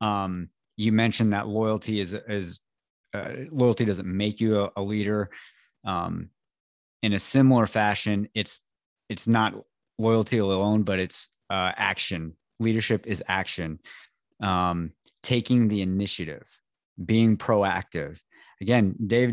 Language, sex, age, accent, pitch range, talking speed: English, male, 20-39, American, 95-110 Hz, 125 wpm